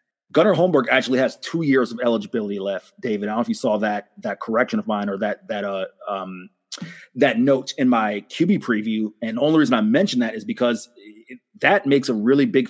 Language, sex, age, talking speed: English, male, 30-49, 220 wpm